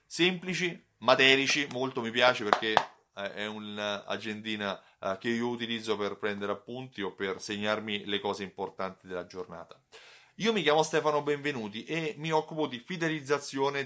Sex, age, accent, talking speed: male, 30-49, native, 140 wpm